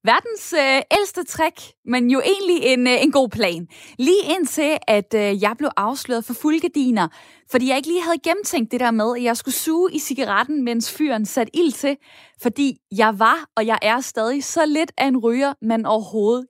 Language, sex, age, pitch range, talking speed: Danish, female, 20-39, 220-290 Hz, 200 wpm